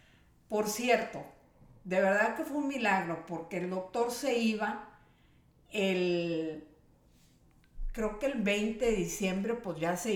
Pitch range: 170-220 Hz